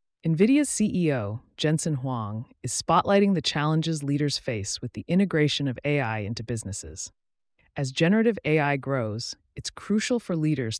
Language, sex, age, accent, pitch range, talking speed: English, female, 30-49, American, 120-160 Hz, 140 wpm